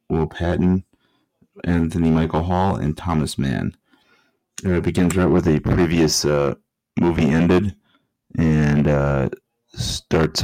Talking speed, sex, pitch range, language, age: 120 wpm, male, 75-90 Hz, English, 30-49